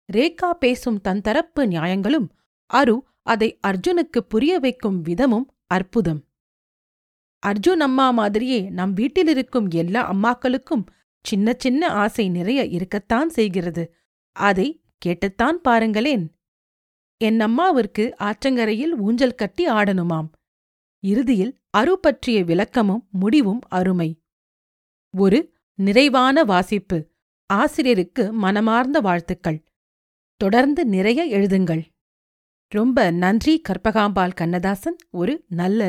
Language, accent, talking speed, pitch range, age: Tamil, native, 85 wpm, 185-260 Hz, 40-59